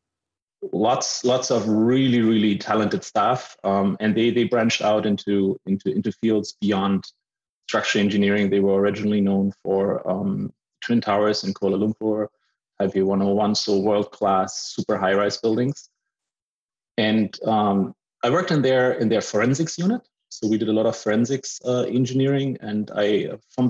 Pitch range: 100-120 Hz